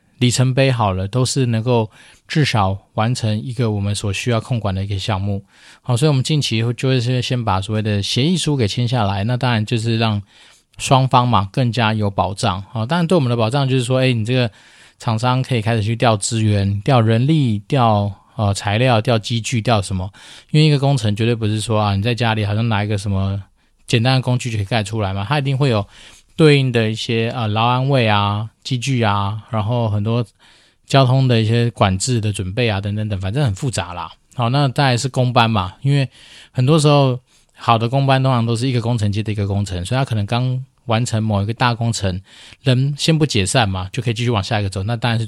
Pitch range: 105-130 Hz